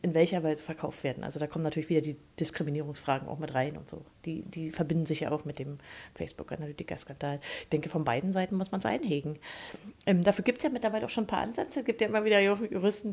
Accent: German